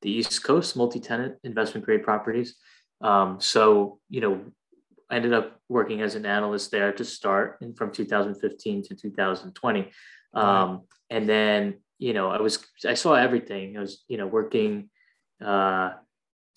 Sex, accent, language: male, American, English